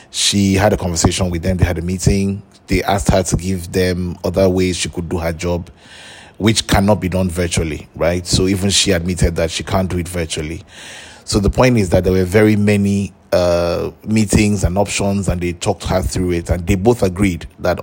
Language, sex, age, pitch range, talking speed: English, male, 30-49, 85-100 Hz, 210 wpm